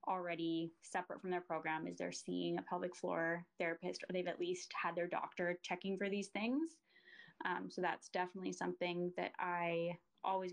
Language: English